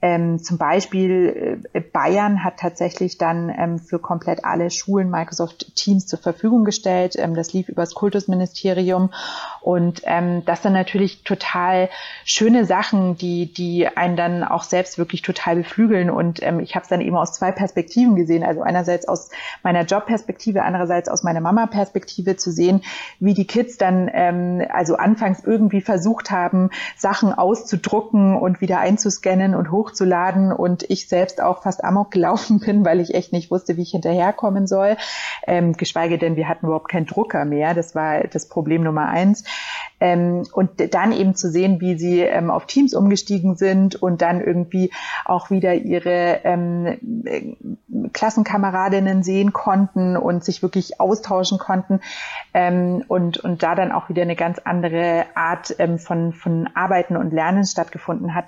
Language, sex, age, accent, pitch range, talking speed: German, female, 30-49, German, 175-195 Hz, 165 wpm